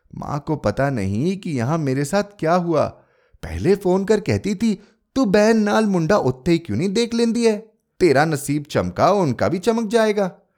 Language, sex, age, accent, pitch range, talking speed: Hindi, male, 30-49, native, 135-205 Hz, 175 wpm